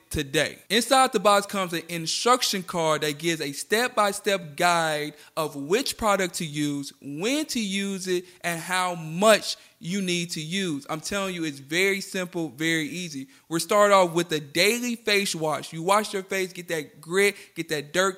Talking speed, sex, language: 180 wpm, male, English